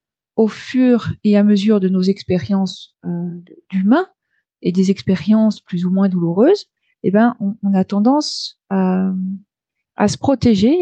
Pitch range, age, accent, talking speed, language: 195-245 Hz, 40-59, French, 150 wpm, French